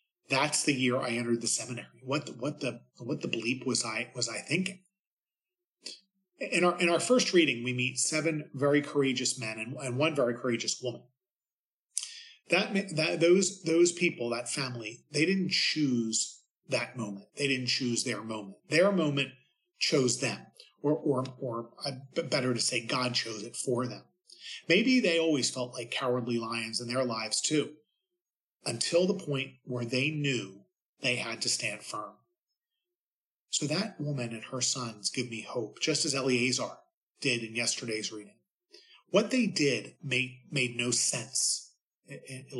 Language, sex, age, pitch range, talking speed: English, male, 30-49, 120-165 Hz, 160 wpm